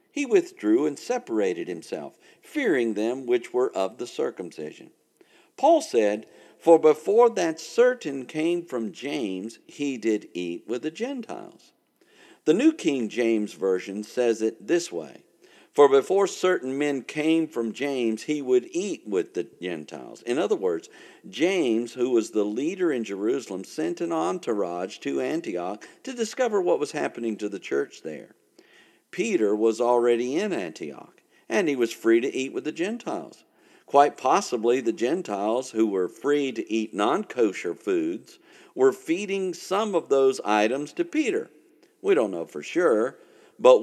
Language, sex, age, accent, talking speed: English, male, 50-69, American, 155 wpm